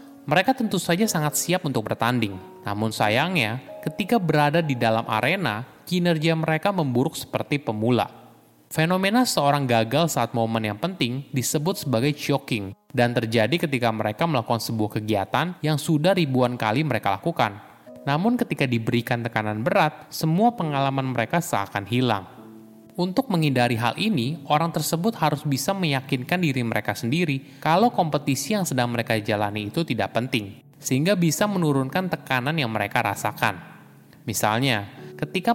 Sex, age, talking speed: male, 20-39, 140 wpm